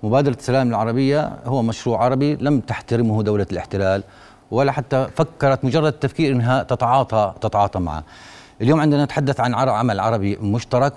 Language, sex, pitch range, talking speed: Arabic, male, 100-130 Hz, 140 wpm